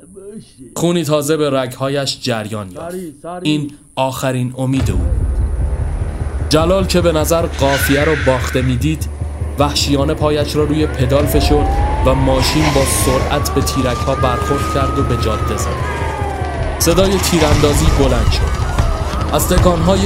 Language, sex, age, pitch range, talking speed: Persian, male, 20-39, 85-140 Hz, 130 wpm